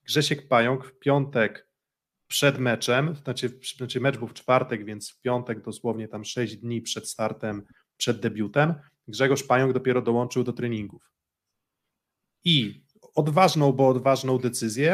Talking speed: 135 wpm